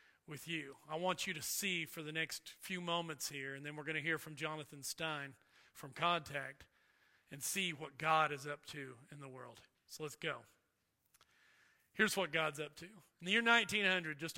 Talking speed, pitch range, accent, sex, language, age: 195 wpm, 155-190 Hz, American, male, English, 40-59